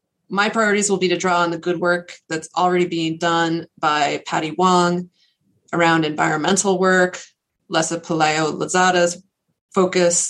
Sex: female